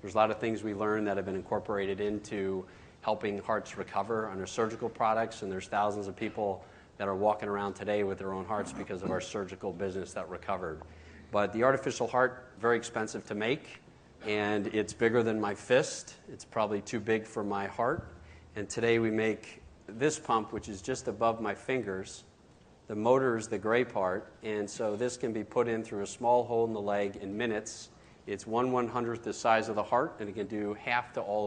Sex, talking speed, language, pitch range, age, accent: male, 210 wpm, English, 100-115 Hz, 40-59, American